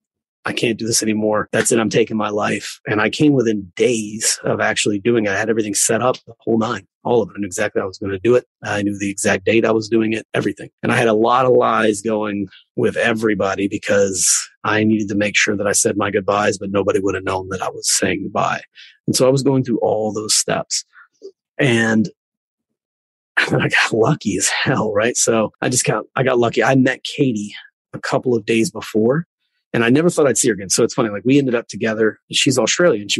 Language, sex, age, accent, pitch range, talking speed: English, male, 30-49, American, 105-125 Hz, 235 wpm